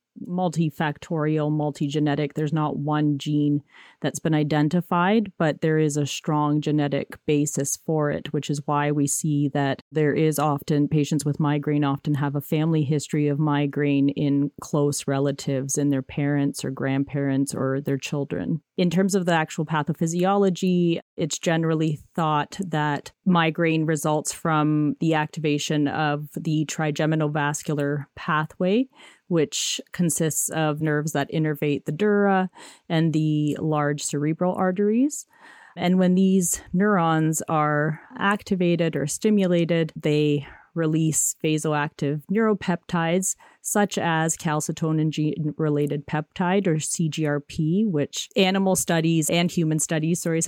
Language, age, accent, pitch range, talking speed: English, 30-49, American, 150-170 Hz, 125 wpm